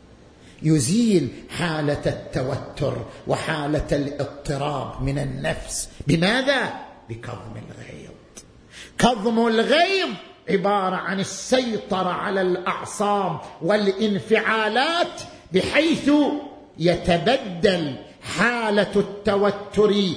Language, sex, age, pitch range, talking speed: Arabic, male, 50-69, 145-215 Hz, 65 wpm